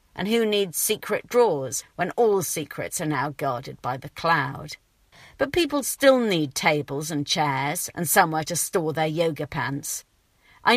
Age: 50-69